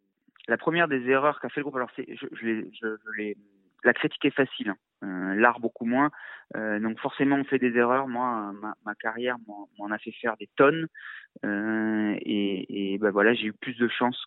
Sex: male